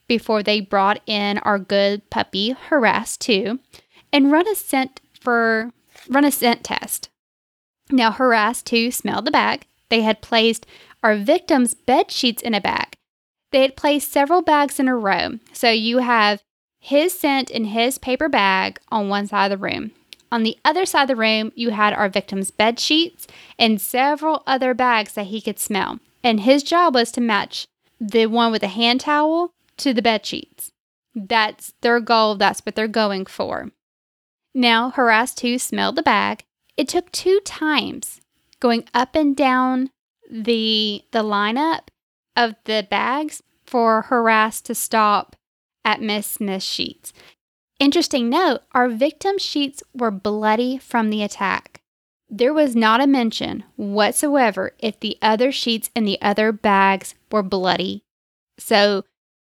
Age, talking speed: 20-39, 160 wpm